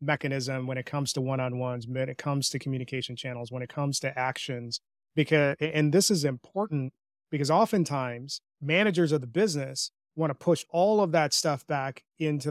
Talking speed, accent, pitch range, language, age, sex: 175 wpm, American, 130-150 Hz, English, 30-49, male